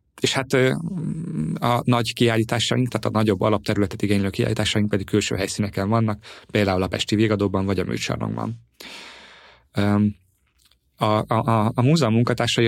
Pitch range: 100-115 Hz